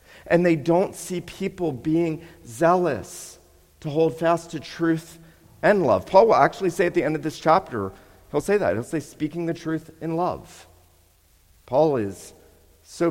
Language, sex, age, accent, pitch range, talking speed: English, male, 40-59, American, 105-160 Hz, 170 wpm